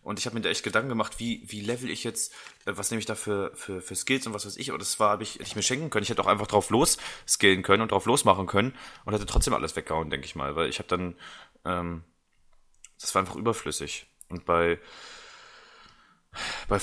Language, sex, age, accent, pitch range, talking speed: English, male, 20-39, German, 90-110 Hz, 235 wpm